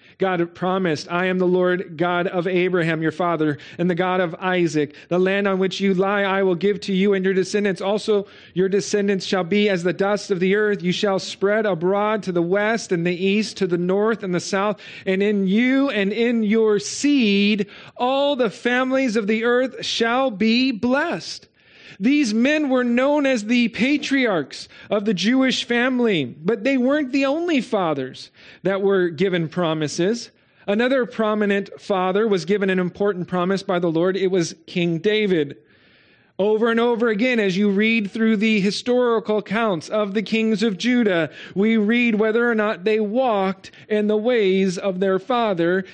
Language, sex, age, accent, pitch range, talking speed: English, male, 40-59, American, 185-225 Hz, 180 wpm